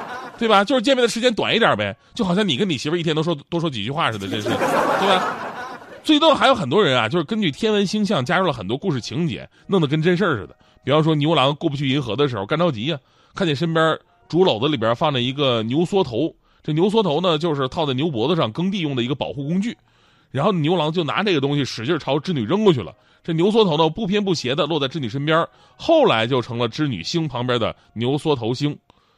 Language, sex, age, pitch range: Chinese, male, 20-39, 135-180 Hz